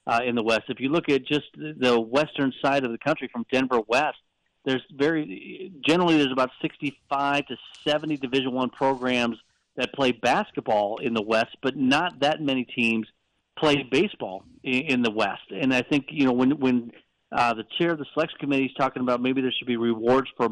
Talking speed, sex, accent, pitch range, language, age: 205 wpm, male, American, 120-140 Hz, English, 40-59